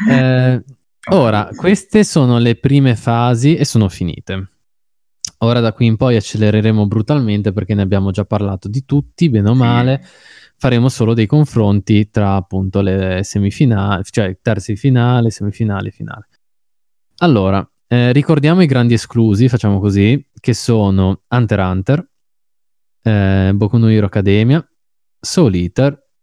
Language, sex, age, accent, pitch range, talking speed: Italian, male, 20-39, native, 100-135 Hz, 135 wpm